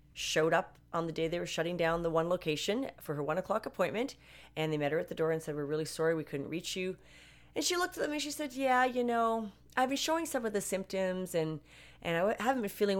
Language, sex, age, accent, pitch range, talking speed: English, female, 30-49, American, 160-260 Hz, 260 wpm